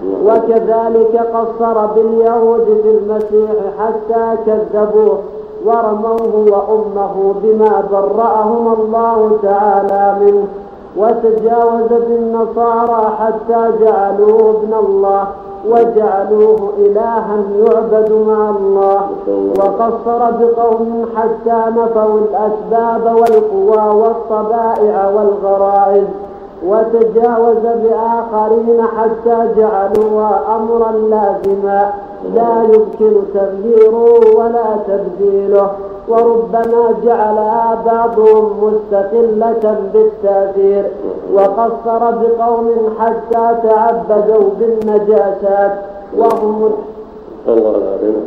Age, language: 50-69, Arabic